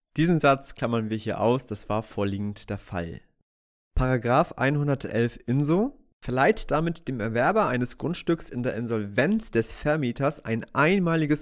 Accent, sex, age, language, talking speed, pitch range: German, male, 30-49, German, 140 wpm, 120-170 Hz